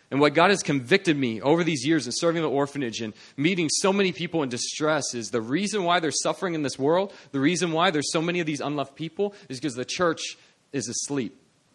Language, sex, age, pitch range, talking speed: English, male, 30-49, 120-165 Hz, 230 wpm